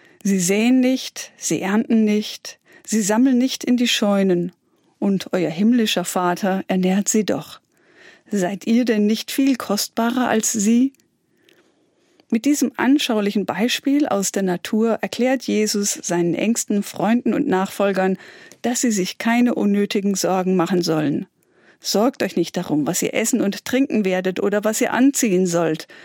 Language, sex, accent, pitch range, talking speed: German, female, German, 185-245 Hz, 145 wpm